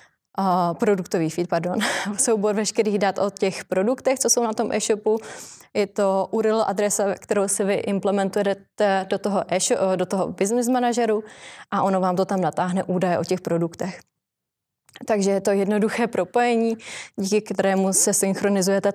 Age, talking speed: 20-39, 155 wpm